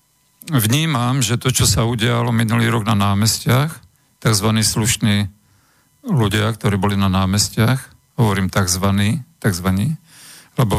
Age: 50-69